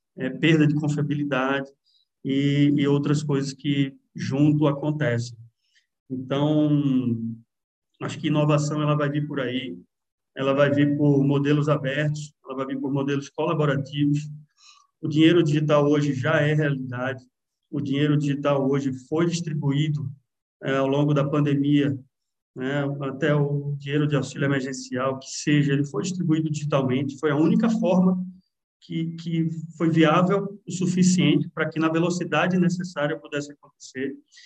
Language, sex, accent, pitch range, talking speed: Portuguese, male, Brazilian, 140-160 Hz, 140 wpm